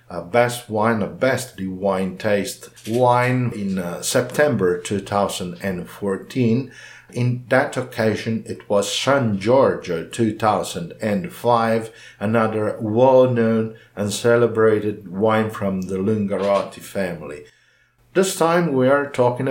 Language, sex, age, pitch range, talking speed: English, male, 50-69, 100-120 Hz, 100 wpm